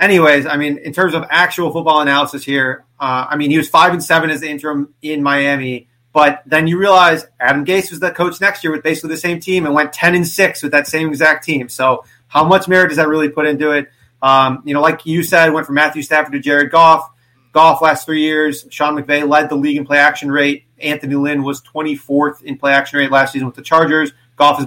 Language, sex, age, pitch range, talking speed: English, male, 30-49, 130-155 Hz, 230 wpm